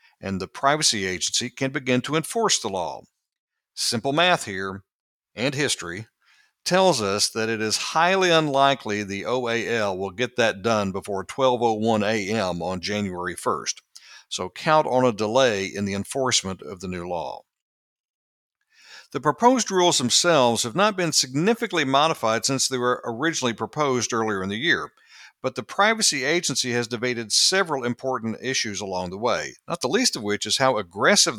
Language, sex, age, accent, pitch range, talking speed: English, male, 60-79, American, 105-160 Hz, 160 wpm